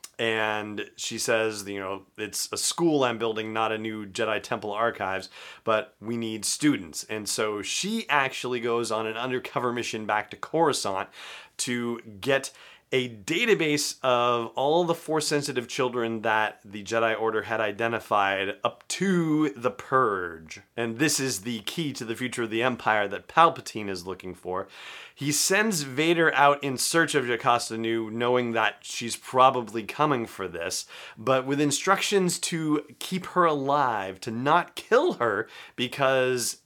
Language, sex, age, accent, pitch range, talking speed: English, male, 30-49, American, 110-145 Hz, 155 wpm